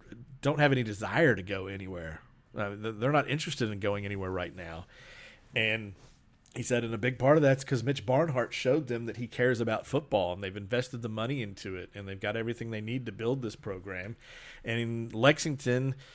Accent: American